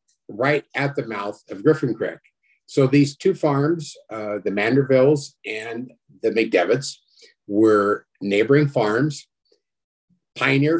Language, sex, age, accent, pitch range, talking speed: English, male, 50-69, American, 110-150 Hz, 115 wpm